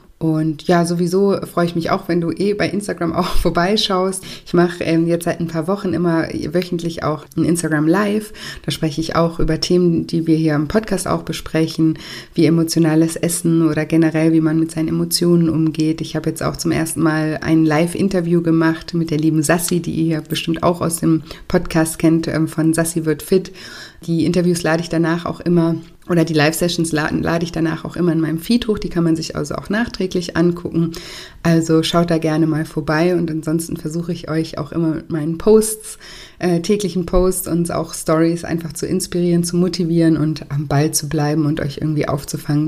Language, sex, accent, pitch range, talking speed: German, female, German, 155-175 Hz, 195 wpm